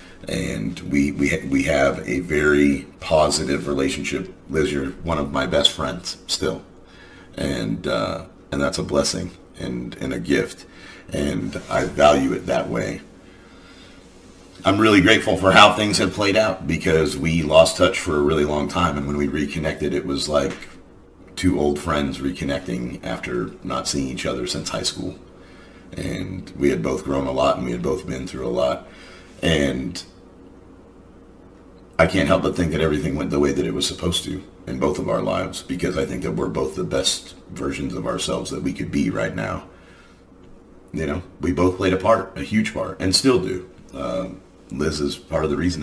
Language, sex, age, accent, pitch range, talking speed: English, male, 40-59, American, 80-95 Hz, 190 wpm